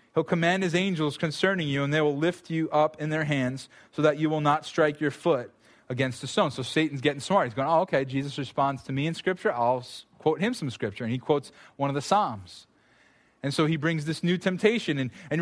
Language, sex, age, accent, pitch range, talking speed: English, male, 20-39, American, 135-175 Hz, 235 wpm